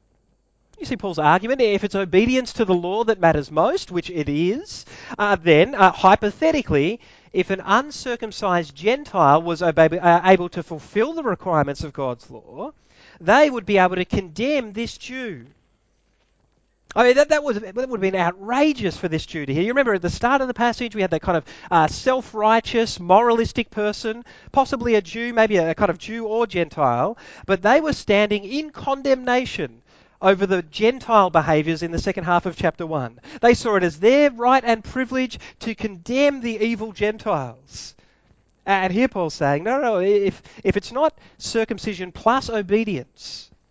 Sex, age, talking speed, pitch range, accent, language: male, 30-49, 175 wpm, 175-235 Hz, Australian, English